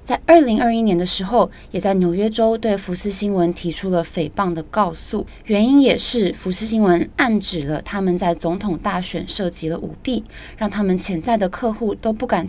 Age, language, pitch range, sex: 20-39, Chinese, 175-225 Hz, female